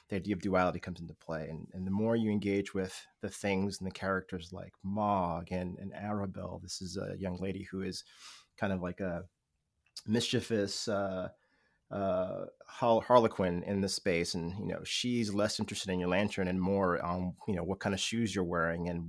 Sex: male